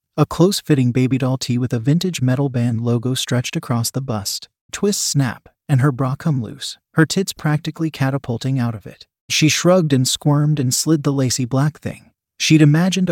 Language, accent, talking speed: English, American, 190 wpm